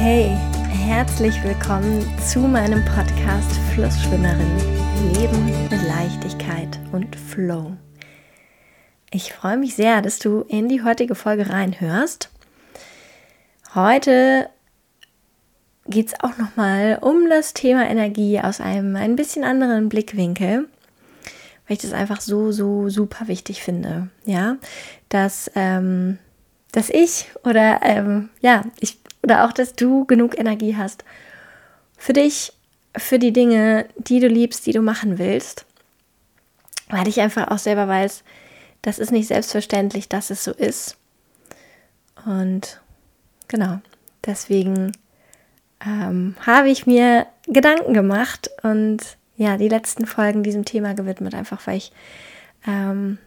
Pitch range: 185-230 Hz